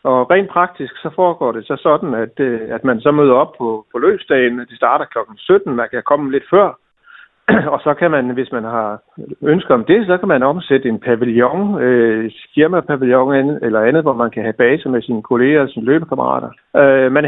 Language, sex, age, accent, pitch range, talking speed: Danish, male, 60-79, native, 120-150 Hz, 205 wpm